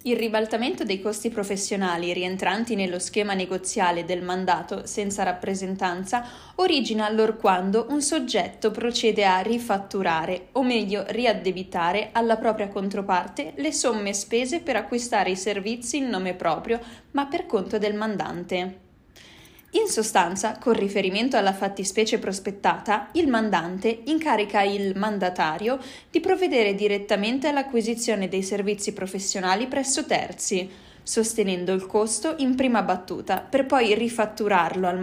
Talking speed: 125 wpm